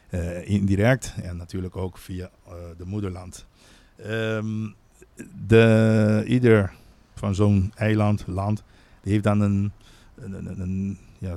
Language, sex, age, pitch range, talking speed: Dutch, male, 50-69, 95-110 Hz, 125 wpm